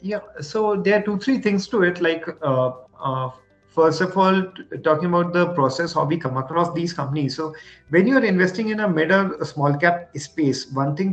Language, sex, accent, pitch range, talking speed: English, male, Indian, 150-200 Hz, 210 wpm